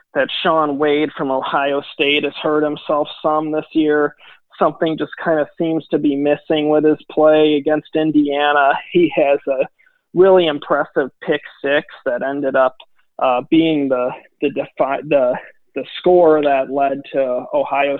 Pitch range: 135-160 Hz